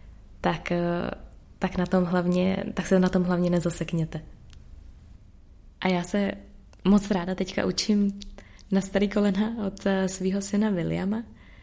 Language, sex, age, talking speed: Czech, female, 20-39, 110 wpm